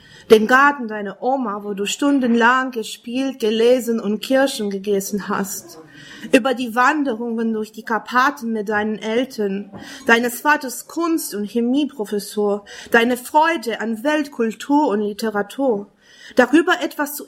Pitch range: 210-280 Hz